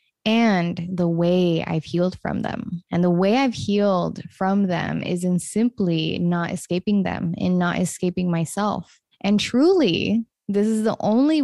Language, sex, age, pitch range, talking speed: English, female, 20-39, 170-205 Hz, 155 wpm